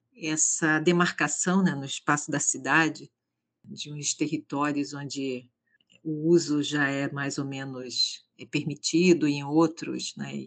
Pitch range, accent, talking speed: 140-170 Hz, Brazilian, 145 wpm